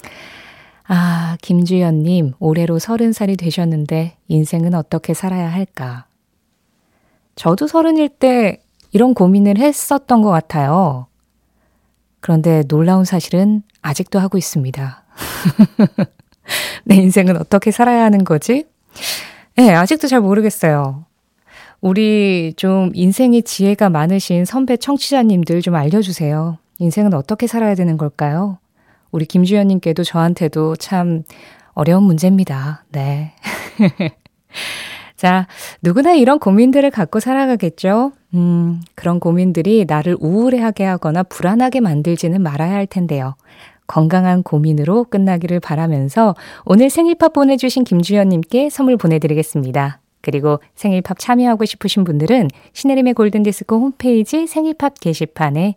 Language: Korean